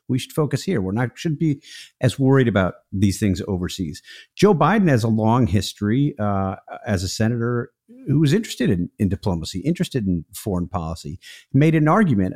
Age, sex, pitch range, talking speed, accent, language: 50-69, male, 105-140 Hz, 175 wpm, American, English